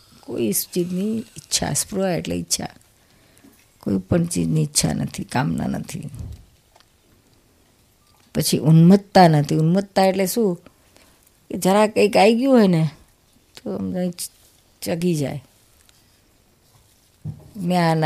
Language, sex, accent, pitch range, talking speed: Gujarati, female, native, 120-180 Hz, 105 wpm